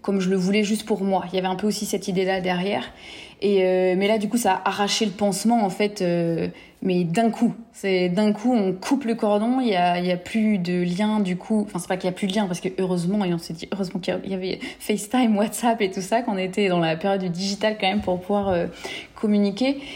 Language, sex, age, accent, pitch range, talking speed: French, female, 20-39, French, 185-225 Hz, 265 wpm